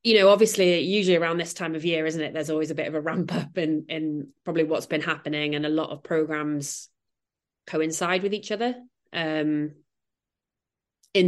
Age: 20-39